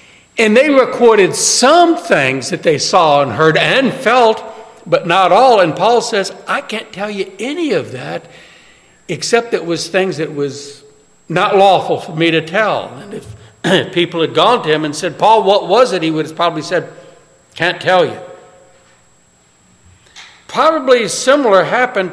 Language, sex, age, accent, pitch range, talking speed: English, male, 60-79, American, 170-240 Hz, 165 wpm